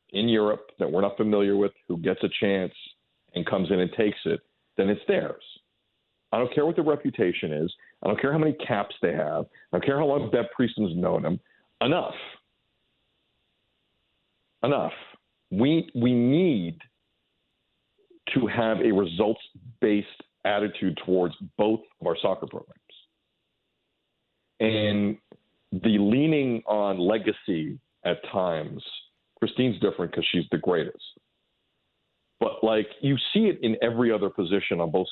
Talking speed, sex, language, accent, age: 145 wpm, male, English, American, 50-69